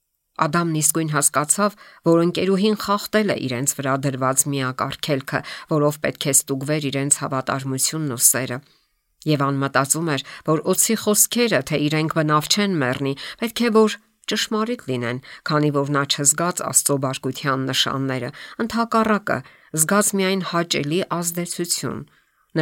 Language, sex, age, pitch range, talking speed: English, female, 50-69, 135-190 Hz, 100 wpm